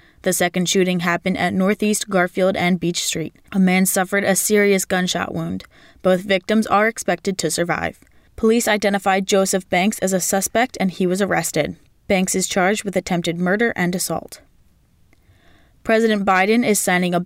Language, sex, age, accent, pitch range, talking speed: English, female, 20-39, American, 175-205 Hz, 165 wpm